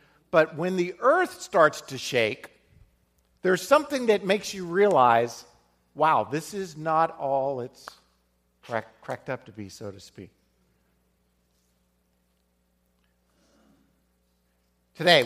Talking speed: 105 wpm